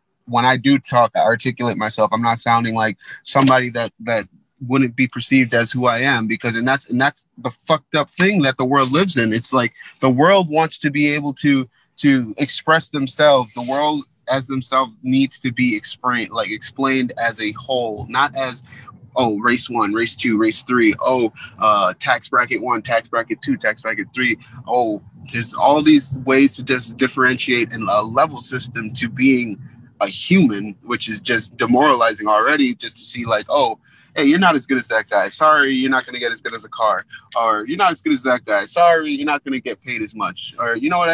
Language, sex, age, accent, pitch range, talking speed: English, male, 30-49, American, 120-145 Hz, 210 wpm